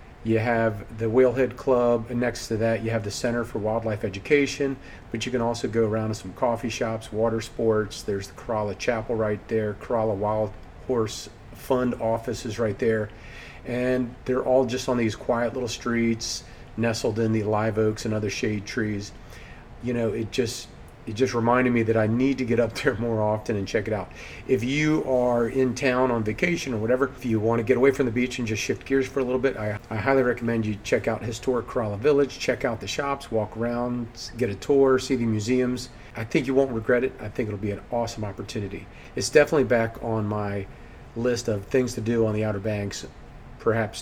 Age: 40-59